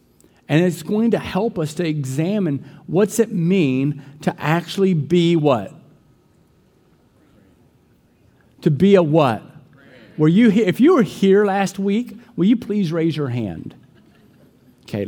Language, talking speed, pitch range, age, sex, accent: English, 140 wpm, 130-180 Hz, 50-69, male, American